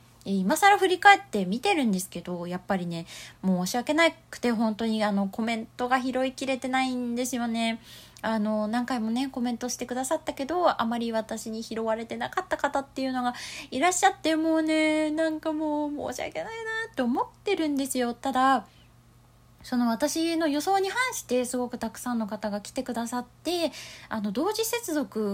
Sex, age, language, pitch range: female, 20-39, Japanese, 225-320 Hz